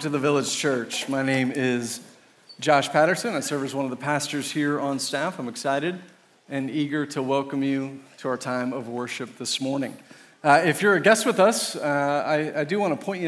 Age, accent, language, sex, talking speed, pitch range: 40-59, American, English, male, 215 wpm, 130-155 Hz